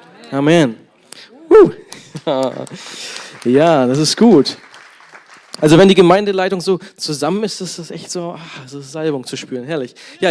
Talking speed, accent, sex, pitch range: 150 wpm, German, male, 140-175 Hz